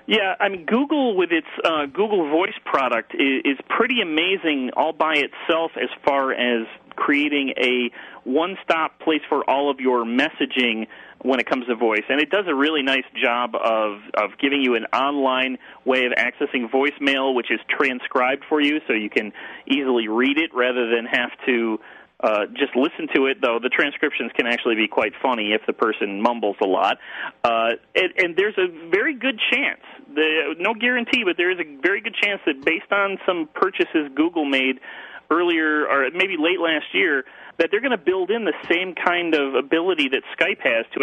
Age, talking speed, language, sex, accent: 40-59, 190 wpm, English, male, American